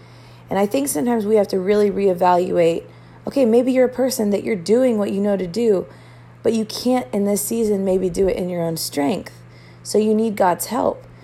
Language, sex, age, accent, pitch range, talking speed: English, female, 30-49, American, 160-200 Hz, 215 wpm